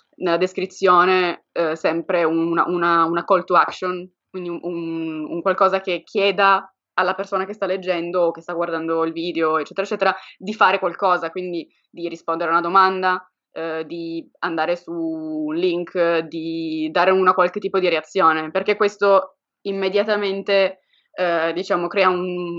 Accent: native